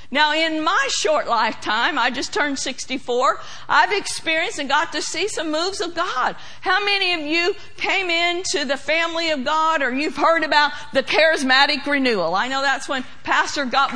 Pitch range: 275-360 Hz